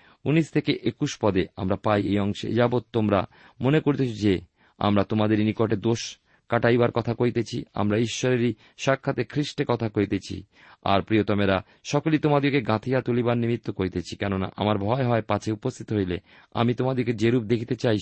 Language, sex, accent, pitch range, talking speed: Bengali, male, native, 100-125 Hz, 145 wpm